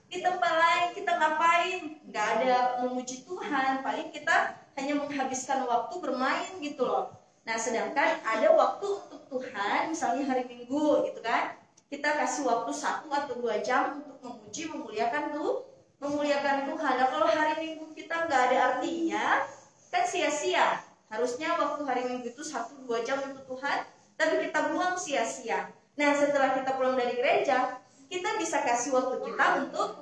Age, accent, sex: 20-39, native, female